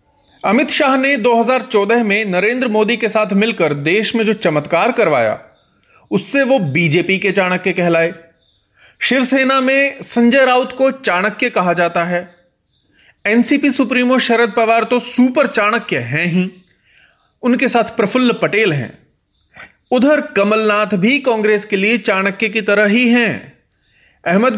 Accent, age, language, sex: native, 30-49, Hindi, male